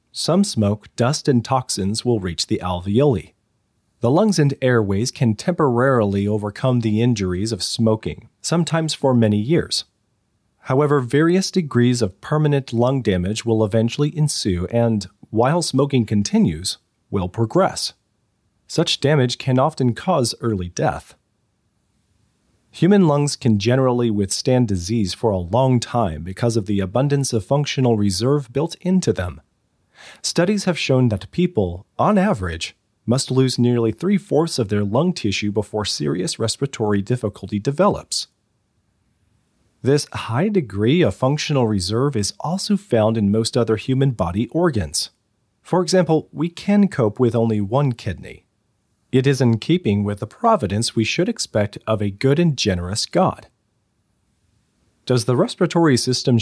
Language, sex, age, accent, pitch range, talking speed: English, male, 30-49, American, 105-140 Hz, 140 wpm